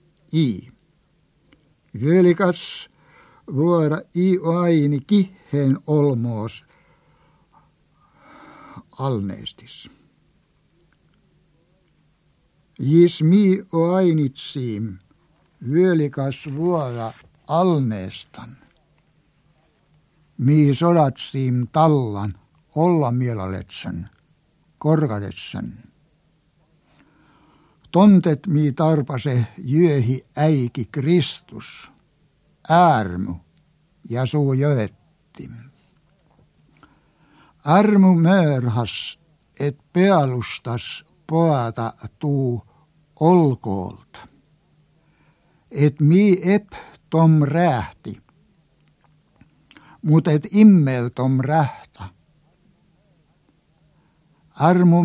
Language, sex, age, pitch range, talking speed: Finnish, male, 60-79, 135-165 Hz, 50 wpm